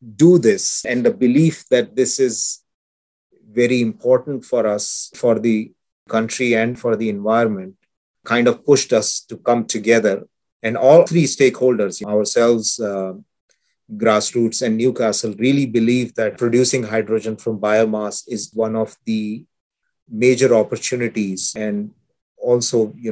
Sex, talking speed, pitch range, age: male, 130 wpm, 110-130 Hz, 30-49